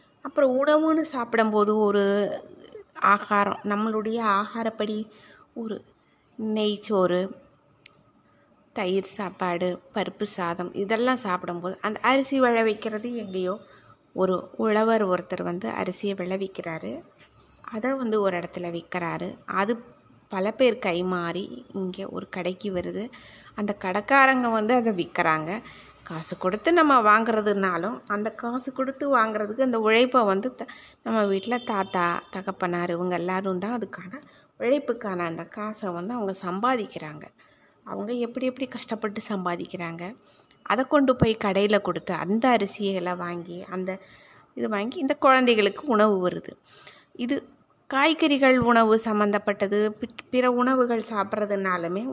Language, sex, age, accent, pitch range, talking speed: Tamil, female, 20-39, native, 185-245 Hz, 110 wpm